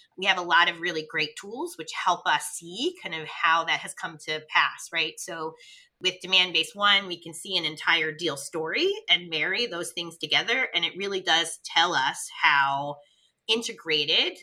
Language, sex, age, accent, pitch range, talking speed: English, female, 20-39, American, 155-185 Hz, 185 wpm